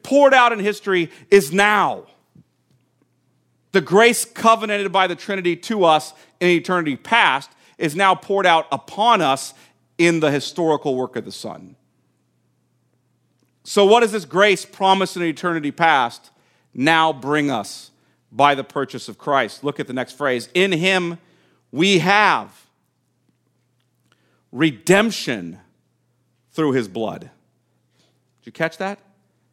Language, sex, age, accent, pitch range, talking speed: English, male, 40-59, American, 130-185 Hz, 130 wpm